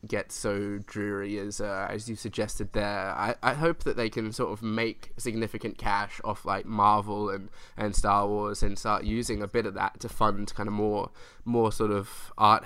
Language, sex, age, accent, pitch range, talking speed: English, male, 10-29, Australian, 100-115 Hz, 205 wpm